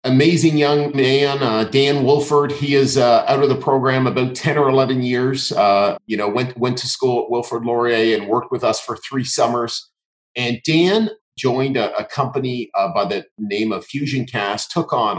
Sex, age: male, 40-59